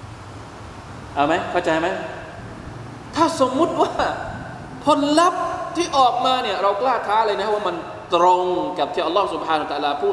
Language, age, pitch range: Thai, 20-39, 180-275 Hz